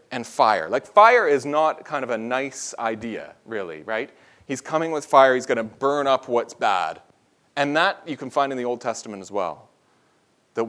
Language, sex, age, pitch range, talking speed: English, male, 30-49, 120-170 Hz, 200 wpm